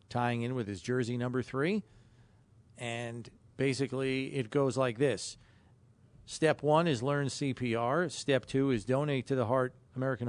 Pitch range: 110-130 Hz